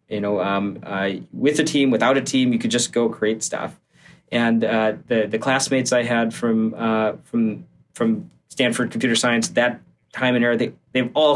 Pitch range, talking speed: 105-130 Hz, 195 wpm